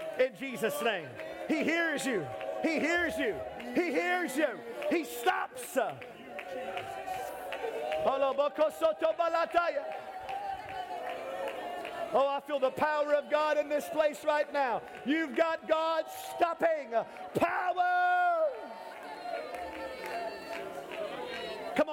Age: 40-59